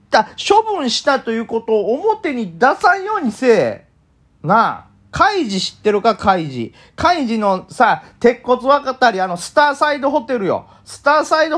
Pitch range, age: 245-395 Hz, 40-59